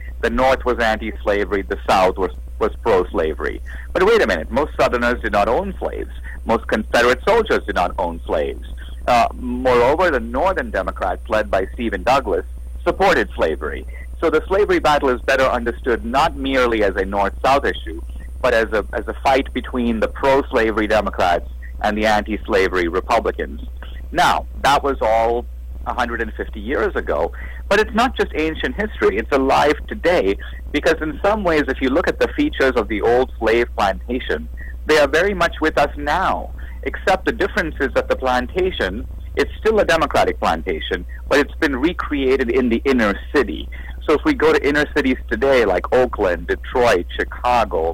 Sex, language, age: male, English, 50-69